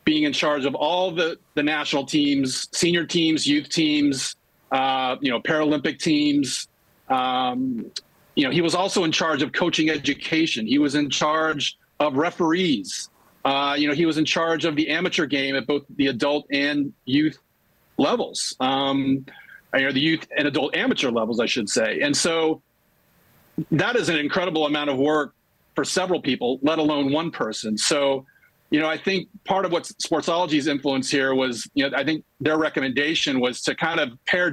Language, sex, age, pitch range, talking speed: English, male, 40-59, 140-165 Hz, 180 wpm